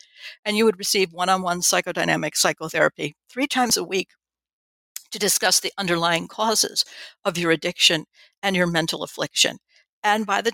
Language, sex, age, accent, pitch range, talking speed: English, female, 60-79, American, 175-215 Hz, 150 wpm